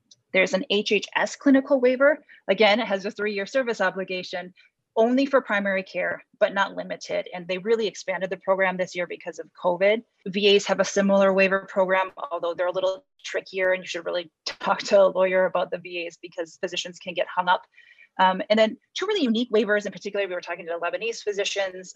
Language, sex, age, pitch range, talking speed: English, female, 30-49, 185-225 Hz, 200 wpm